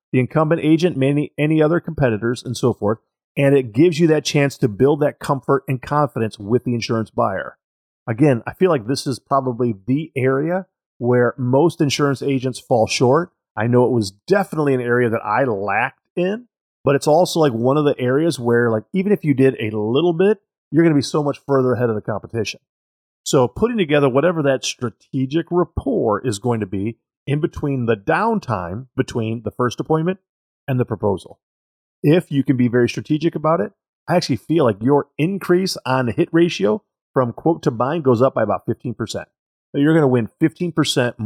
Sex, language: male, English